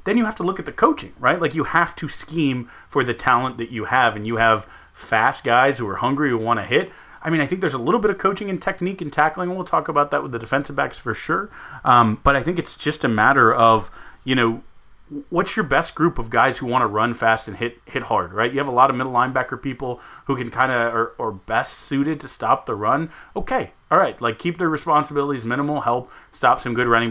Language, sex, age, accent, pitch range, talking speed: English, male, 30-49, American, 115-150 Hz, 255 wpm